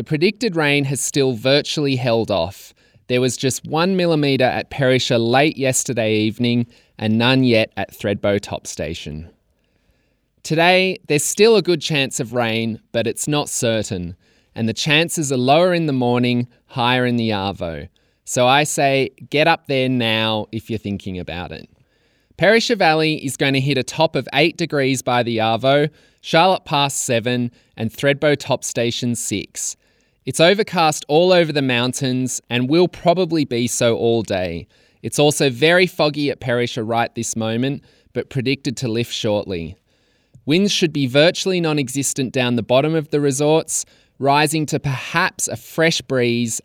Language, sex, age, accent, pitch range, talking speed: English, male, 20-39, Australian, 115-150 Hz, 165 wpm